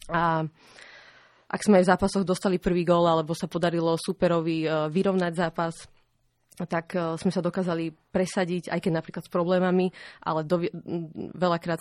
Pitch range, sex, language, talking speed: 165-180 Hz, female, Slovak, 140 wpm